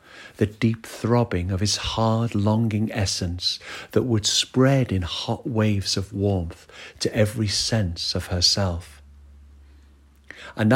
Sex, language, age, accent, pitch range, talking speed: male, English, 50-69, British, 90-115 Hz, 125 wpm